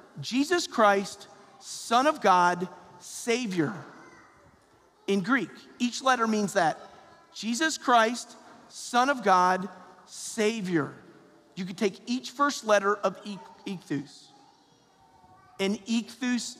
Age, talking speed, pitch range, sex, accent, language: 40-59, 105 wpm, 205-295 Hz, male, American, English